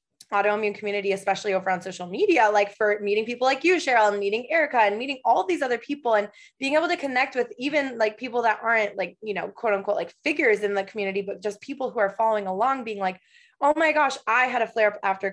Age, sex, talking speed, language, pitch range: 20-39, female, 235 wpm, English, 200-255 Hz